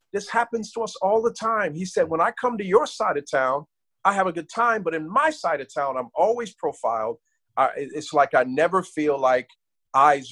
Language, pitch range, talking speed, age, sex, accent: English, 125-180 Hz, 225 wpm, 50-69, male, American